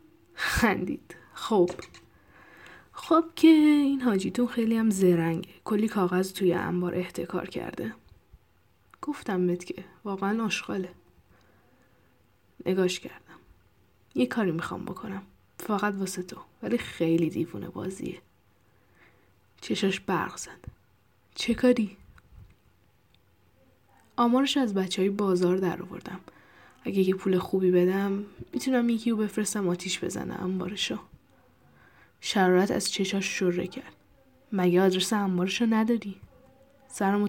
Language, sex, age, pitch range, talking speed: Persian, female, 10-29, 180-220 Hz, 105 wpm